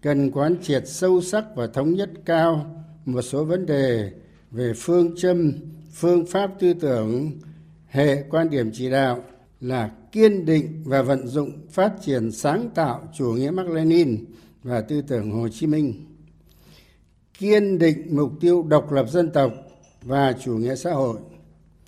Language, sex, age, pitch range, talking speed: Vietnamese, male, 60-79, 125-170 Hz, 160 wpm